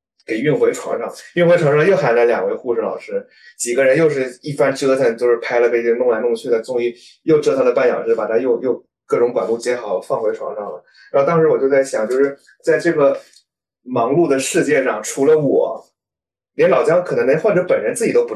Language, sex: Chinese, male